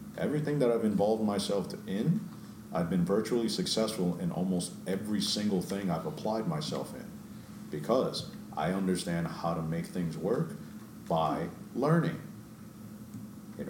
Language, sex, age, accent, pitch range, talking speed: English, male, 40-59, American, 85-105 Hz, 130 wpm